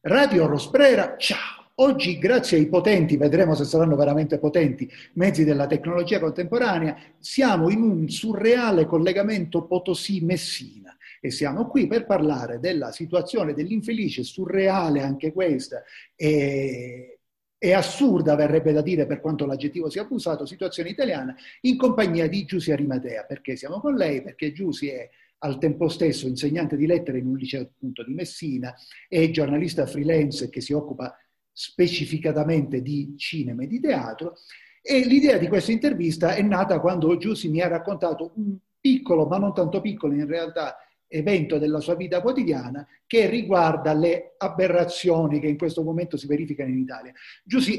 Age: 40-59